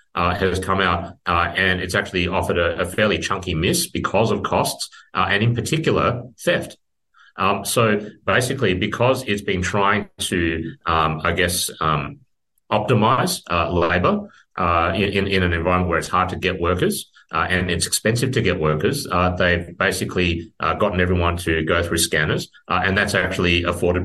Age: 30-49